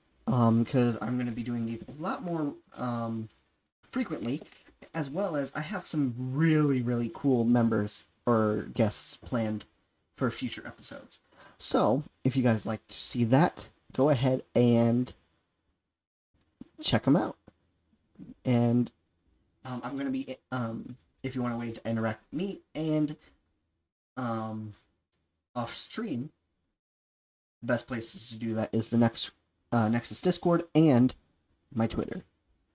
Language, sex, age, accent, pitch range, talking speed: English, male, 30-49, American, 110-135 Hz, 140 wpm